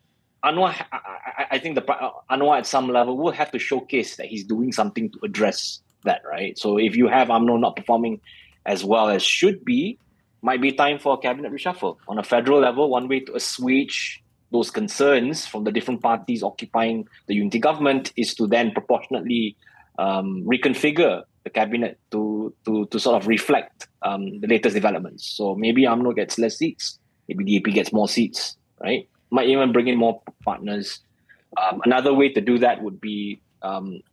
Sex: male